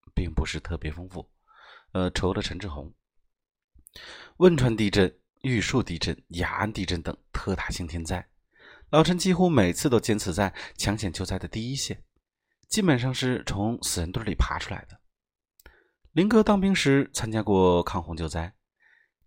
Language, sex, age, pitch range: Chinese, male, 30-49, 85-125 Hz